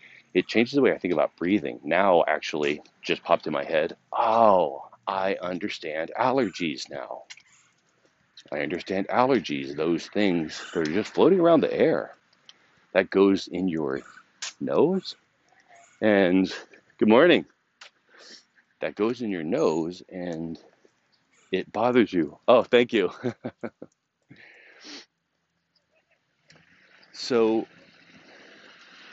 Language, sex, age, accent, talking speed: English, male, 40-59, American, 110 wpm